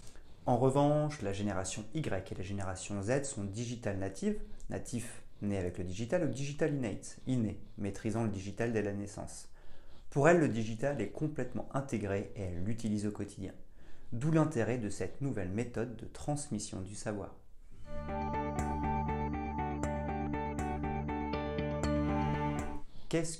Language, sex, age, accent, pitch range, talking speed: French, male, 40-59, French, 95-125 Hz, 130 wpm